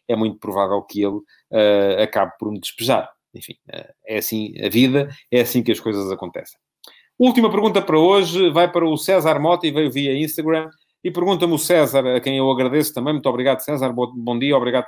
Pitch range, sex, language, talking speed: 115-140 Hz, male, Portuguese, 200 wpm